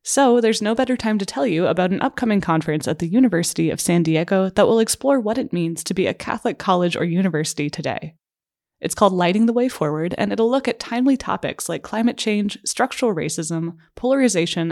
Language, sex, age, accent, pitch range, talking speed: English, female, 20-39, American, 165-225 Hz, 205 wpm